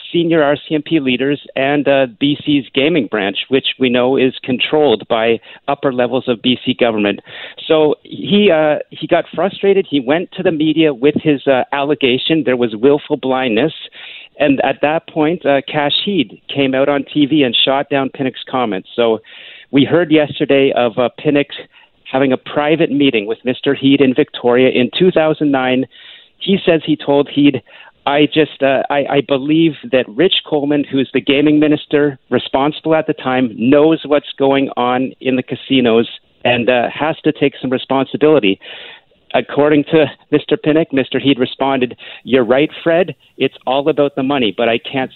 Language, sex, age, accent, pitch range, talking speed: English, male, 50-69, American, 130-150 Hz, 165 wpm